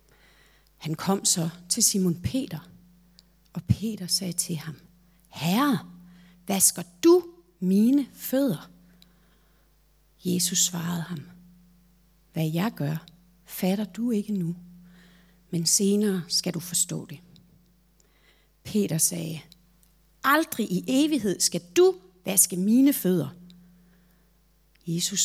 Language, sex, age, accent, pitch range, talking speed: Danish, female, 40-59, native, 170-190 Hz, 100 wpm